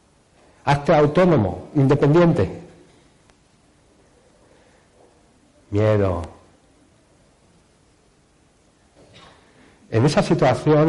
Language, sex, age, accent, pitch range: Spanish, male, 60-79, Spanish, 105-160 Hz